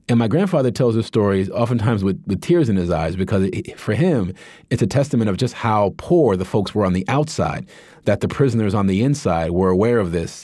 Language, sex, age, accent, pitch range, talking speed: English, male, 30-49, American, 95-115 Hz, 225 wpm